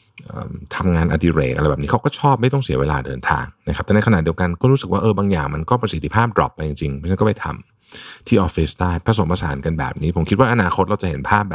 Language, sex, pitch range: Thai, male, 80-105 Hz